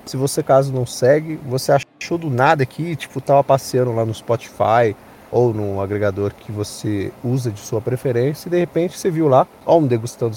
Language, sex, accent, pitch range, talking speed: Portuguese, male, Brazilian, 110-145 Hz, 195 wpm